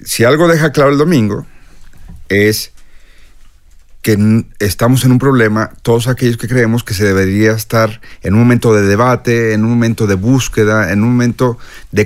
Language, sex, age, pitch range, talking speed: Spanish, male, 40-59, 90-135 Hz, 175 wpm